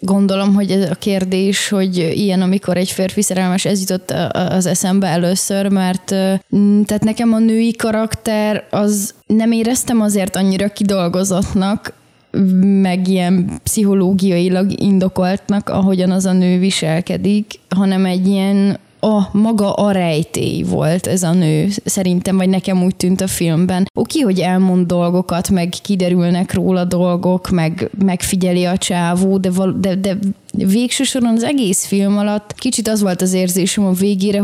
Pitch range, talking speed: 180-200 Hz, 145 wpm